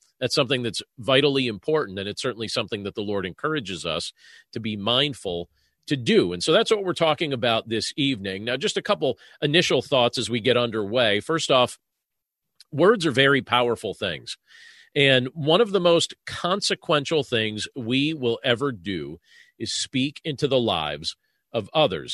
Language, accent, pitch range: English, American, 110-150 Hz